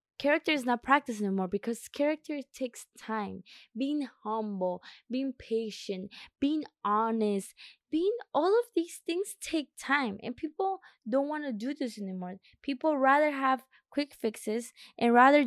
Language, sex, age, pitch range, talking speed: English, female, 20-39, 205-260 Hz, 145 wpm